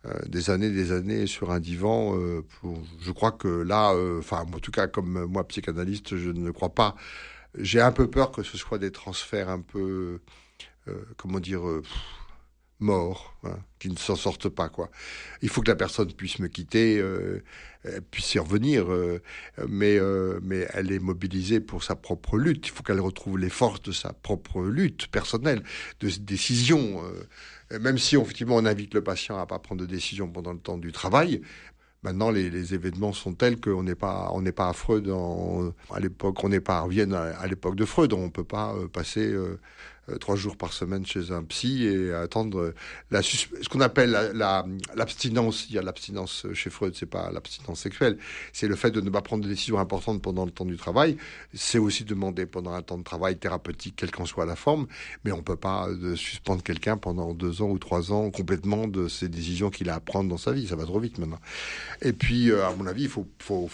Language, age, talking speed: French, 60-79, 215 wpm